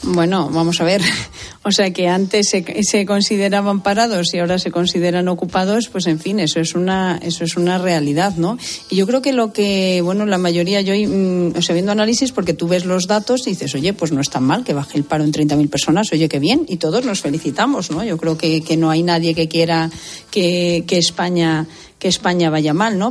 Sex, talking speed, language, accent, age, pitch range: female, 225 wpm, Spanish, Spanish, 40-59, 175-210 Hz